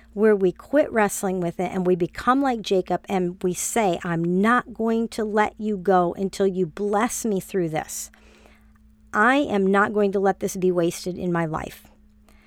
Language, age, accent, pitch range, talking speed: English, 50-69, American, 185-225 Hz, 190 wpm